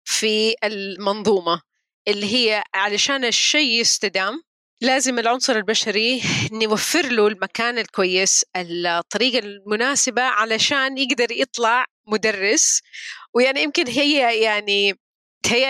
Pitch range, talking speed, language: 200-265 Hz, 95 wpm, Arabic